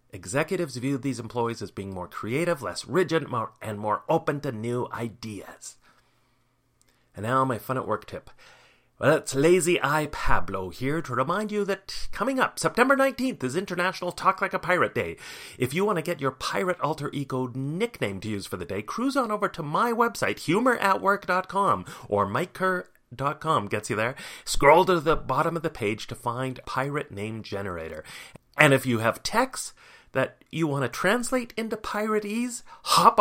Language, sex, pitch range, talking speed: English, male, 120-175 Hz, 175 wpm